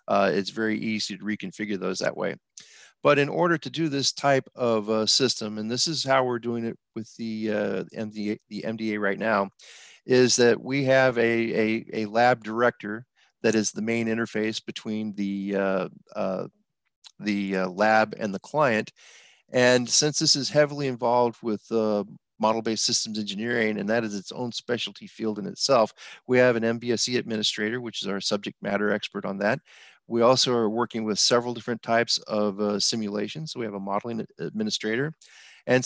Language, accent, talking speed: English, American, 180 wpm